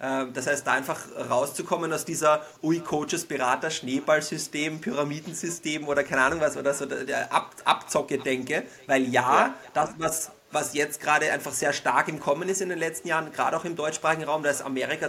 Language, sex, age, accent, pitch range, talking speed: German, male, 30-49, German, 145-180 Hz, 180 wpm